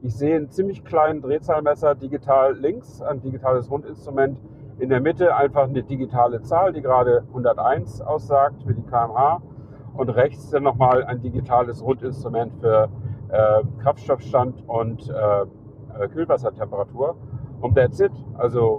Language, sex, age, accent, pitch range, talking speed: German, male, 40-59, German, 120-145 Hz, 135 wpm